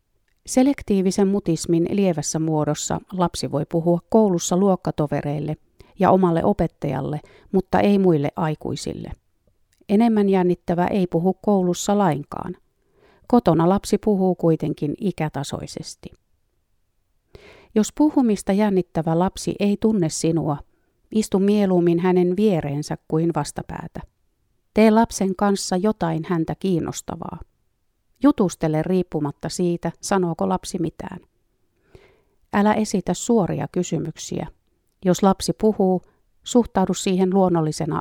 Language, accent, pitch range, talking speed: Finnish, native, 160-200 Hz, 100 wpm